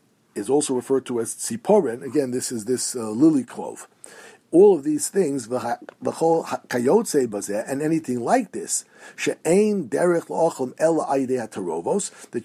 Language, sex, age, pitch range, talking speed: English, male, 50-69, 120-160 Hz, 105 wpm